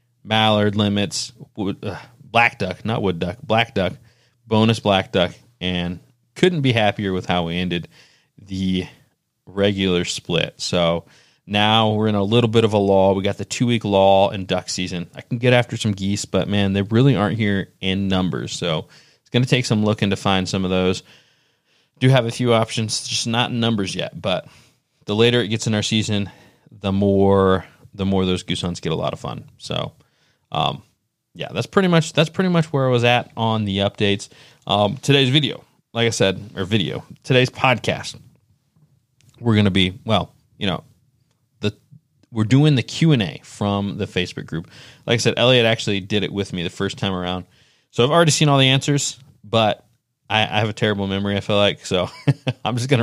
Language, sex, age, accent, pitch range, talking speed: English, male, 30-49, American, 100-125 Hz, 200 wpm